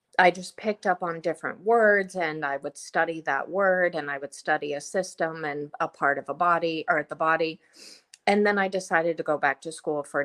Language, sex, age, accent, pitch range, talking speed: English, female, 30-49, American, 155-190 Hz, 220 wpm